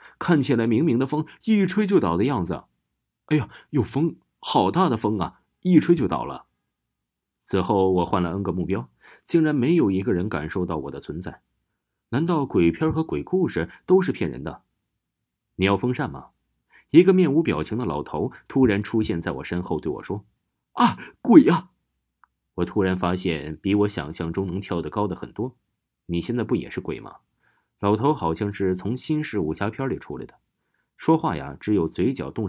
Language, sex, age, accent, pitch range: Chinese, male, 30-49, native, 90-145 Hz